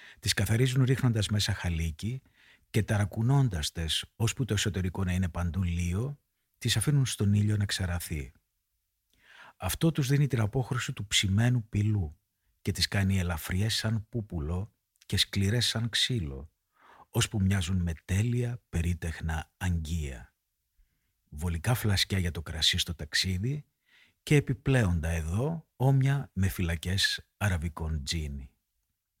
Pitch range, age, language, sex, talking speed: 85-115 Hz, 50-69, Greek, male, 125 wpm